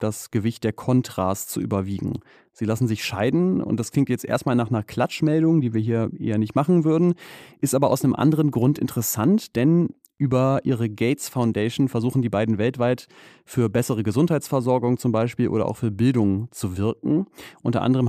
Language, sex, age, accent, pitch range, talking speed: German, male, 30-49, German, 110-140 Hz, 180 wpm